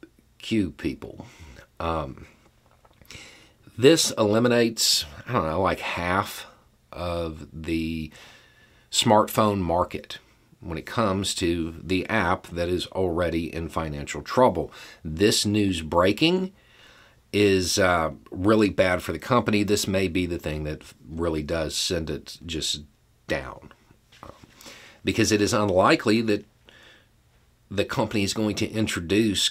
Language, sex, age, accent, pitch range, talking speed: English, male, 40-59, American, 80-110 Hz, 120 wpm